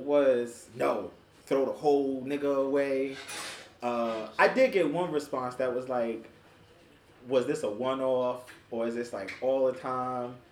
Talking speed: 155 wpm